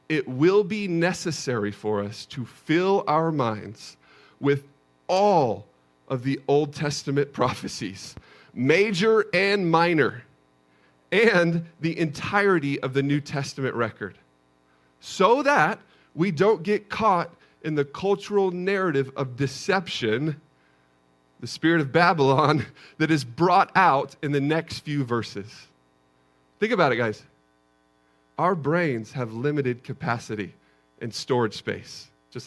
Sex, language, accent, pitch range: male, English, American, 105-175 Hz